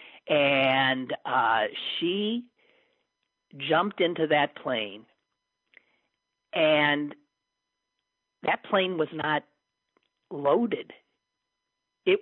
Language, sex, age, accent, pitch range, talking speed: English, male, 50-69, American, 145-240 Hz, 70 wpm